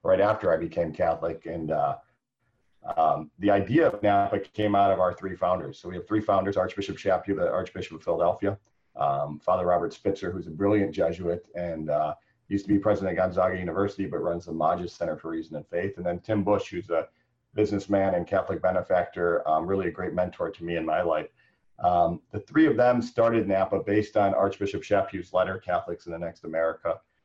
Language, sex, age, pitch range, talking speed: English, male, 40-59, 90-105 Hz, 205 wpm